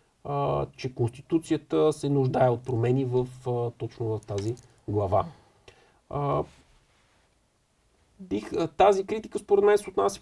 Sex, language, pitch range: male, Bulgarian, 115-155 Hz